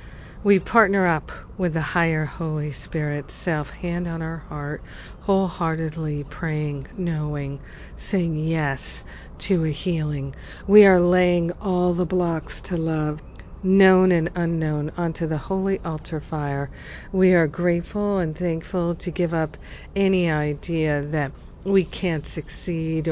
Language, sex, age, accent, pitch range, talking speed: English, female, 50-69, American, 155-180 Hz, 130 wpm